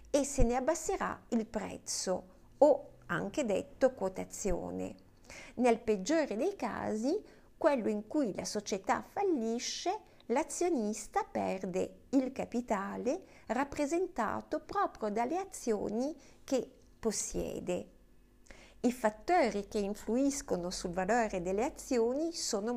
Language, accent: Italian, native